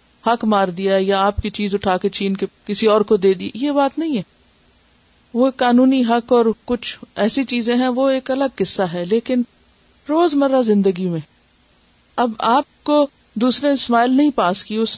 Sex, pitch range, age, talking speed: female, 205-275 Hz, 50-69, 185 wpm